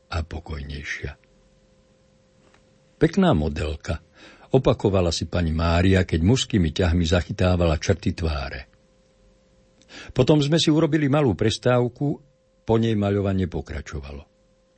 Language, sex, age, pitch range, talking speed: Slovak, male, 60-79, 85-110 Hz, 95 wpm